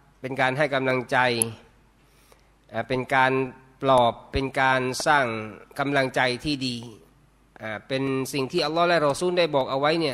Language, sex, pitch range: Thai, male, 135-165 Hz